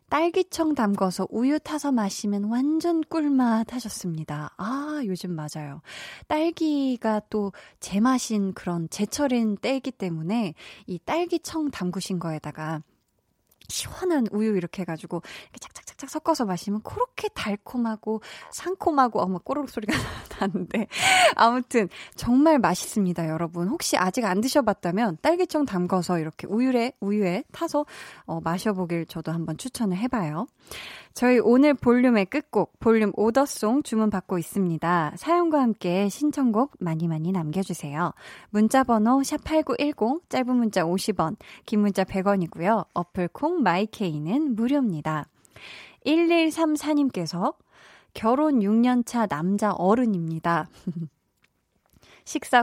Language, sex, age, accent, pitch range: Korean, female, 20-39, native, 190-285 Hz